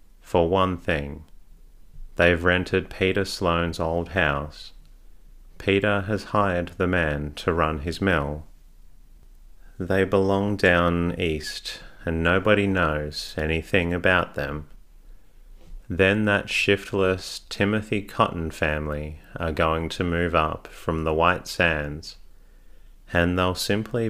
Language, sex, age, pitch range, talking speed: English, male, 30-49, 75-95 Hz, 115 wpm